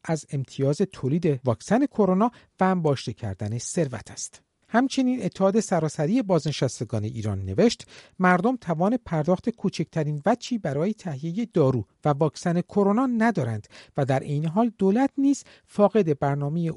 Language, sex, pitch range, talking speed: Persian, male, 135-200 Hz, 130 wpm